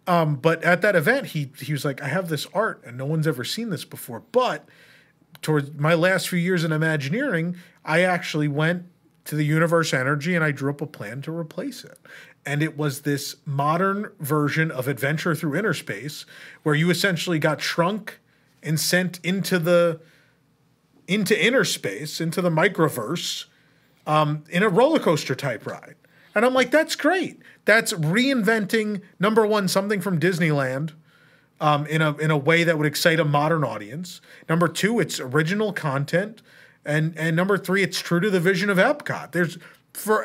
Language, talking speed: English, 180 wpm